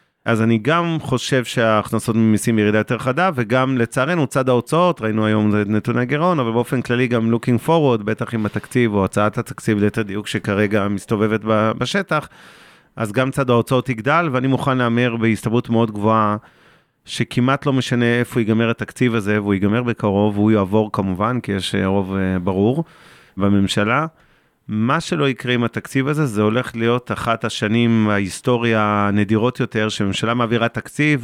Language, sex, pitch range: Hebrew, male, 105-130 Hz